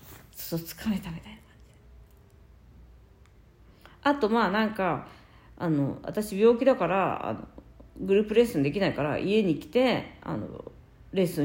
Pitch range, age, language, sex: 185-255 Hz, 40-59, Japanese, female